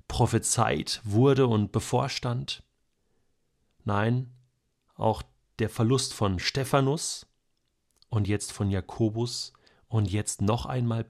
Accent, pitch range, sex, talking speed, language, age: German, 105-130 Hz, male, 95 wpm, German, 30-49